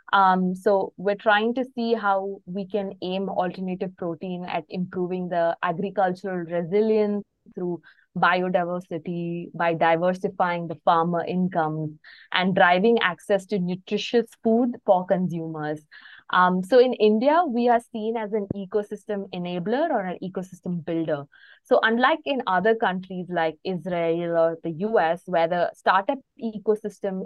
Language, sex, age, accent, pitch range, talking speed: English, female, 20-39, Indian, 175-215 Hz, 135 wpm